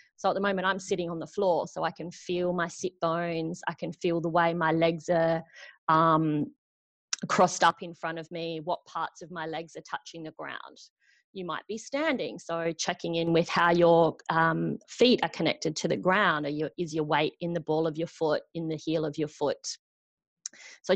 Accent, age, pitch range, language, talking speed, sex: Australian, 30-49, 165-200 Hz, English, 210 wpm, female